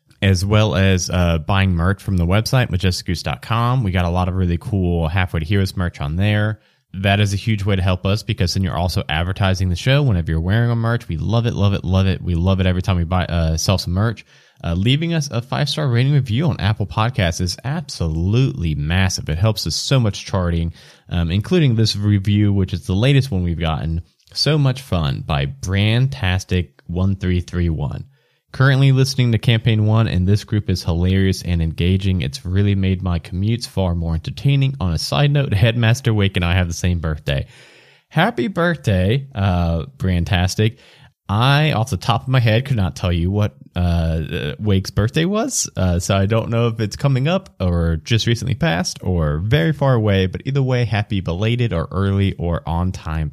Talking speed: 195 wpm